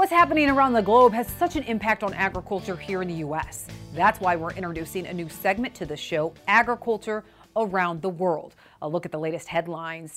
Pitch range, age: 170-225 Hz, 40-59